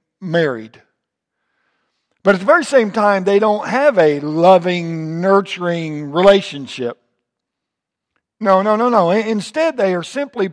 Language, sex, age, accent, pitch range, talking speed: English, male, 60-79, American, 145-220 Hz, 125 wpm